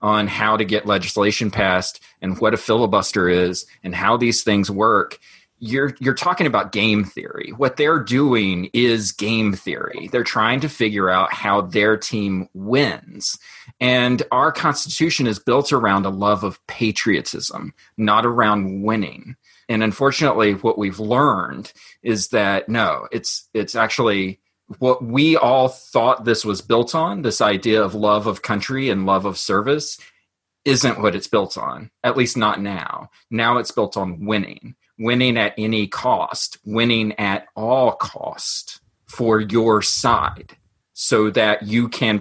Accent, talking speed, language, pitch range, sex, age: American, 155 wpm, English, 100-120 Hz, male, 30-49